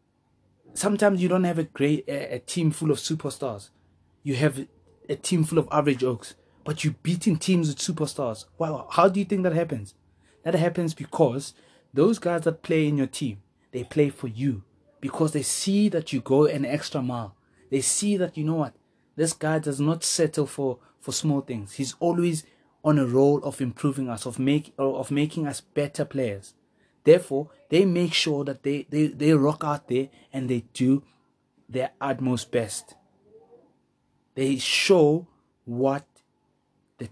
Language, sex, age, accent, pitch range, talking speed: English, male, 20-39, South African, 120-155 Hz, 175 wpm